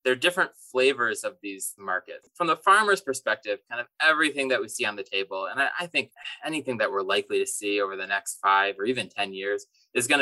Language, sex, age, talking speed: English, male, 20-39, 230 wpm